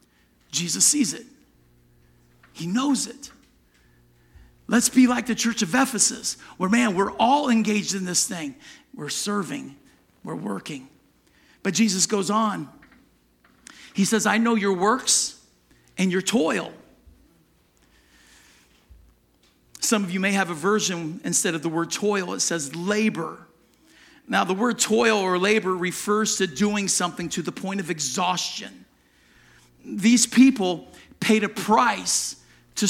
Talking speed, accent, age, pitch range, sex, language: 135 wpm, American, 50-69, 180-250 Hz, male, English